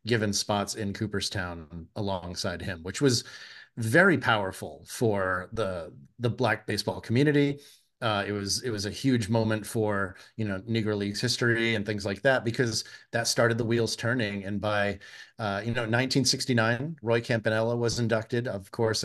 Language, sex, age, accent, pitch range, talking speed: English, male, 30-49, American, 100-115 Hz, 165 wpm